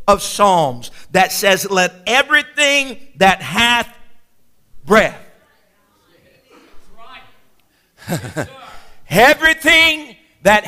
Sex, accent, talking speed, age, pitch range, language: male, American, 55 wpm, 50-69, 235-315 Hz, English